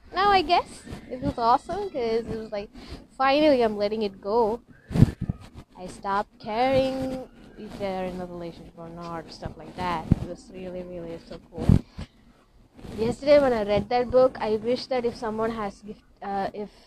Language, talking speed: English, 165 wpm